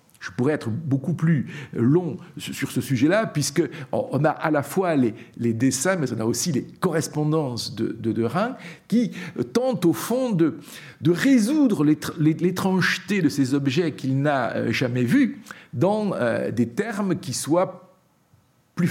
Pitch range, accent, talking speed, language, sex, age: 135-195 Hz, French, 150 wpm, French, male, 50-69